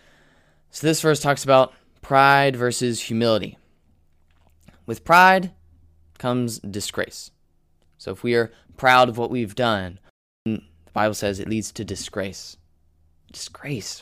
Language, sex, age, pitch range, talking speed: English, male, 20-39, 80-110 Hz, 125 wpm